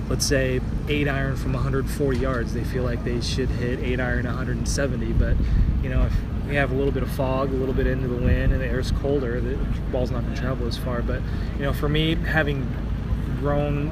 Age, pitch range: 20-39, 115-135 Hz